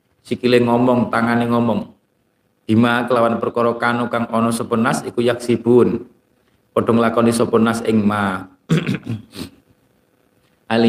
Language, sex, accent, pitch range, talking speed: Indonesian, male, native, 110-125 Hz, 105 wpm